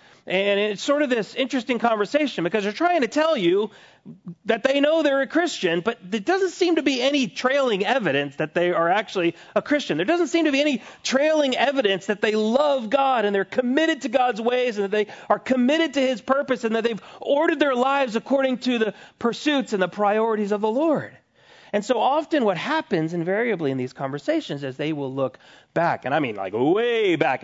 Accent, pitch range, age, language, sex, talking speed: American, 170-275 Hz, 40-59, English, male, 210 wpm